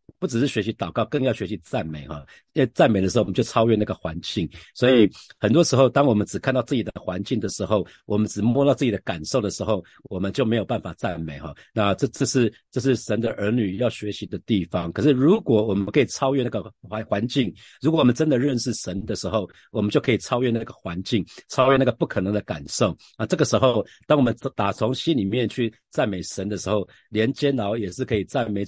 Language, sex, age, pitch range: Chinese, male, 50-69, 100-130 Hz